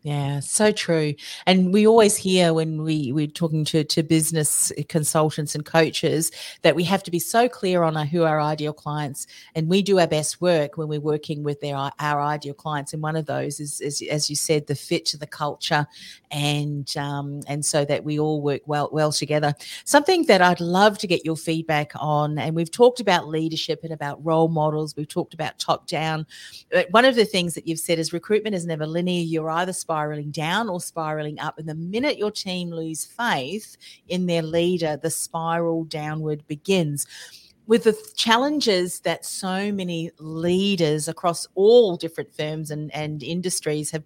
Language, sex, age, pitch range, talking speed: English, female, 40-59, 150-185 Hz, 190 wpm